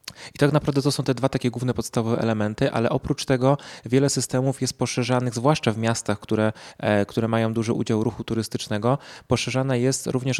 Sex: male